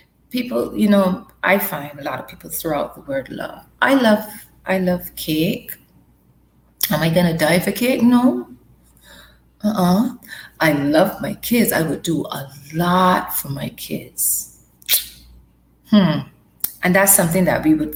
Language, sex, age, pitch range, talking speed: English, female, 30-49, 150-210 Hz, 155 wpm